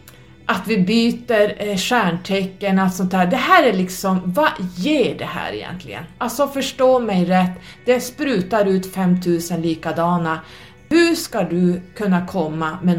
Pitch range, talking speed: 165-225 Hz, 145 wpm